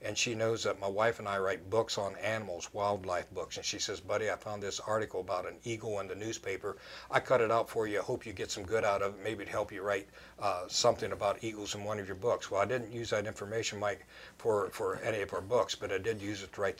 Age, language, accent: 60-79, English, American